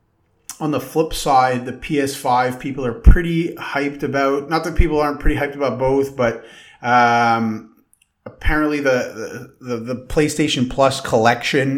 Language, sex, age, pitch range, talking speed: English, male, 30-49, 115-140 Hz, 145 wpm